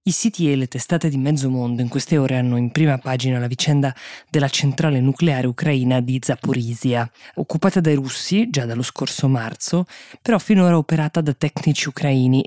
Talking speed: 175 wpm